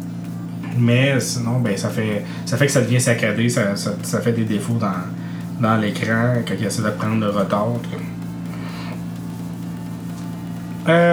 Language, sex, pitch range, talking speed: French, male, 85-145 Hz, 150 wpm